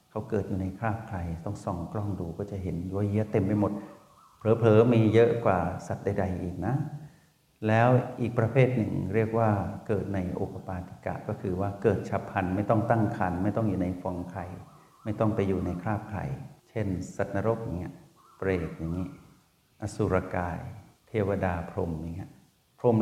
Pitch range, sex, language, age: 95-115 Hz, male, Thai, 60-79